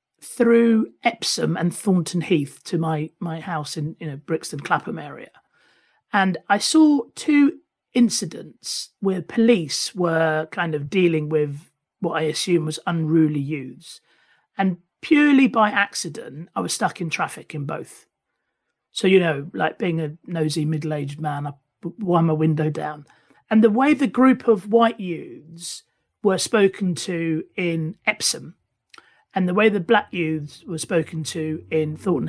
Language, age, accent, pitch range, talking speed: English, 40-59, British, 155-195 Hz, 150 wpm